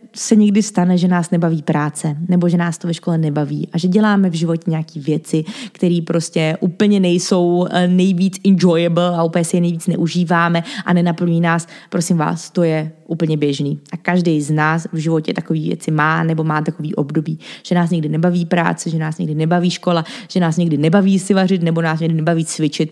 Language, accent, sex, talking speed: Czech, native, female, 200 wpm